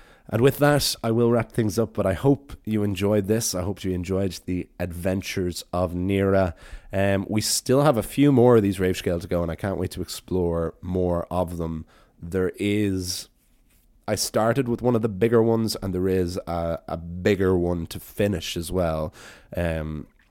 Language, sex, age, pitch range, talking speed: English, male, 30-49, 85-110 Hz, 195 wpm